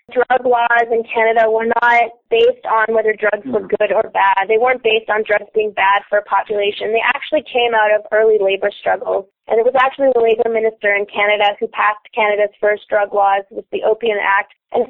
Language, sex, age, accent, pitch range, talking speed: English, female, 20-39, American, 205-230 Hz, 210 wpm